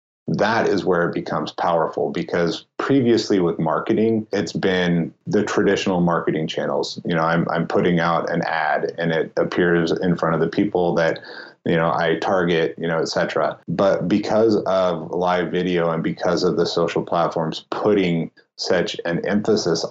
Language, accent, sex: English, American, male